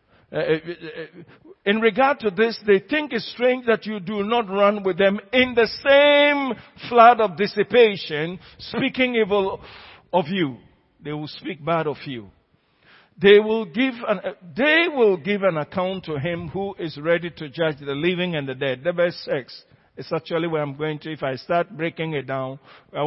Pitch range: 150-210 Hz